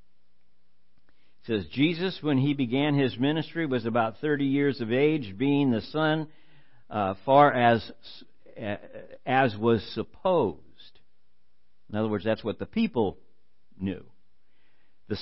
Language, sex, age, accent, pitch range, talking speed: English, male, 60-79, American, 105-145 Hz, 120 wpm